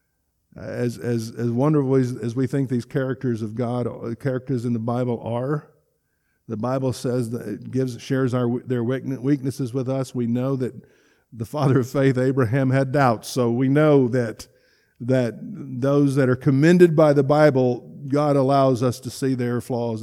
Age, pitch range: 50-69, 115-135 Hz